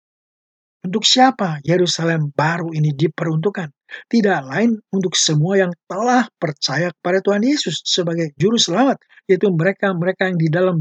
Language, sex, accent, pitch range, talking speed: English, male, Indonesian, 155-200 Hz, 135 wpm